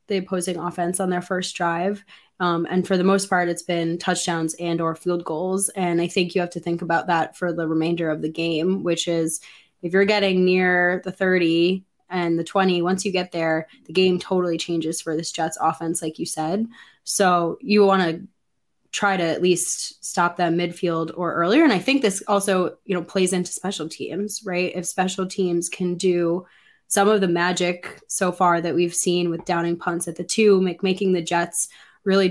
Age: 20-39